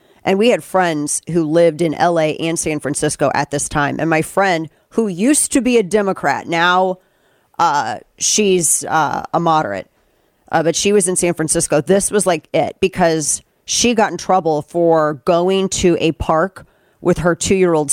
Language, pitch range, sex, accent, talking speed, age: English, 155-185 Hz, female, American, 175 wpm, 40-59